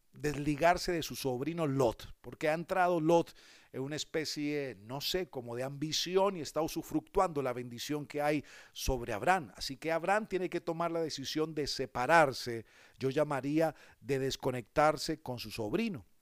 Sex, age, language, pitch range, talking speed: male, 50-69, Spanish, 125-155 Hz, 160 wpm